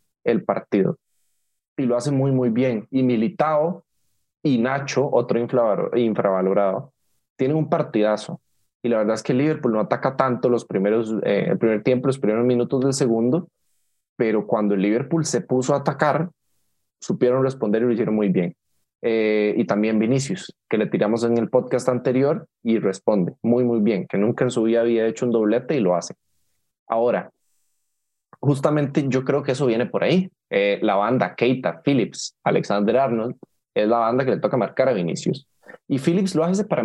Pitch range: 110-145 Hz